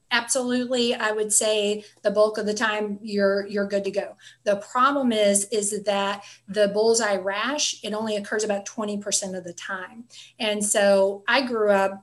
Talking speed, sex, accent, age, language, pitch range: 175 wpm, female, American, 30-49, English, 200-225 Hz